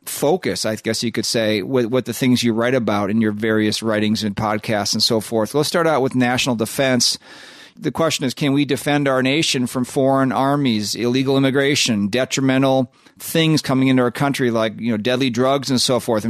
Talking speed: 205 wpm